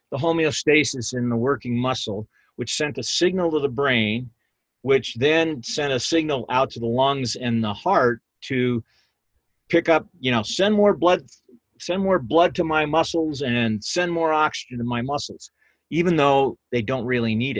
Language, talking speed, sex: English, 175 wpm, male